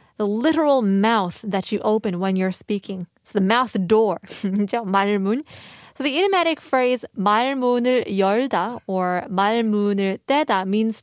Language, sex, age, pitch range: Korean, female, 20-39, 195-255 Hz